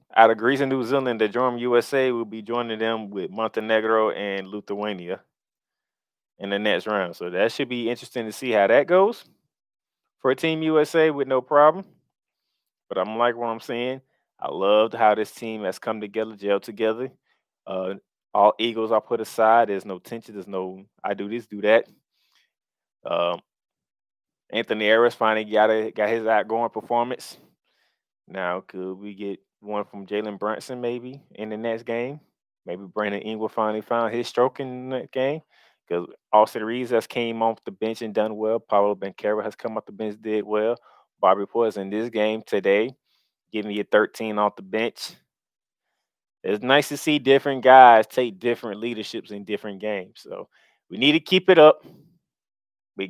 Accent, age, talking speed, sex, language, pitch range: American, 20-39, 175 wpm, male, English, 105-130 Hz